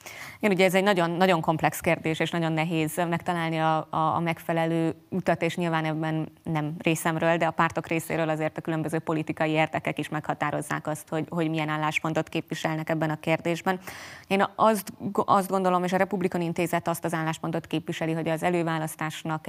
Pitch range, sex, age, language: 160-175 Hz, female, 20-39, Hungarian